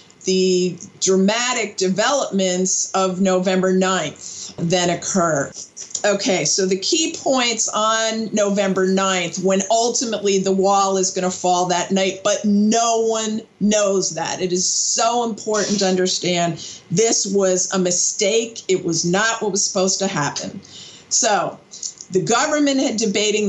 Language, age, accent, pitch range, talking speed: English, 50-69, American, 185-220 Hz, 135 wpm